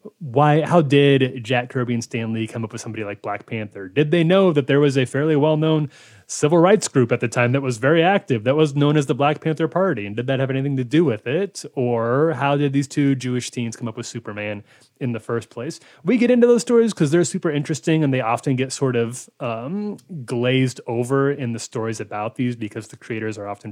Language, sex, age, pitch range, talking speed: English, male, 30-49, 120-155 Hz, 240 wpm